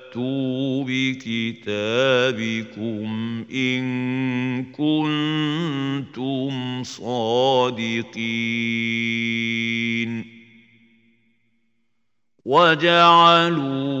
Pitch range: 115-160 Hz